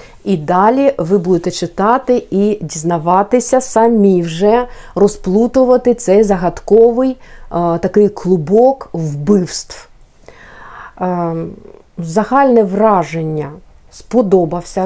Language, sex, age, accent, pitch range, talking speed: Ukrainian, female, 50-69, native, 180-225 Hz, 75 wpm